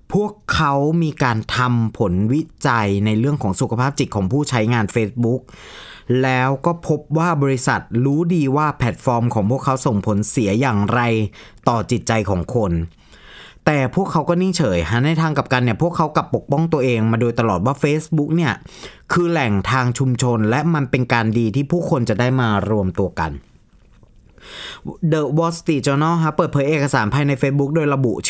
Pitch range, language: 115-160 Hz, Thai